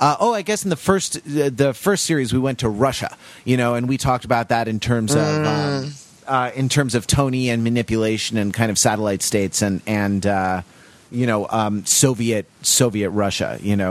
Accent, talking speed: American, 210 wpm